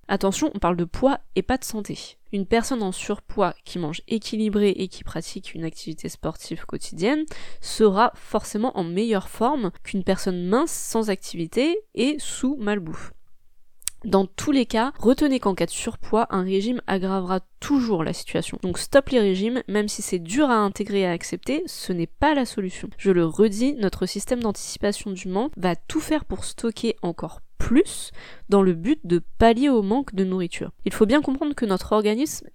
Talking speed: 185 wpm